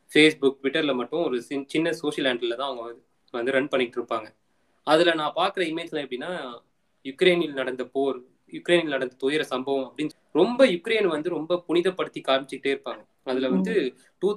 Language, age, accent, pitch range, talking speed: Tamil, 20-39, native, 135-175 Hz, 155 wpm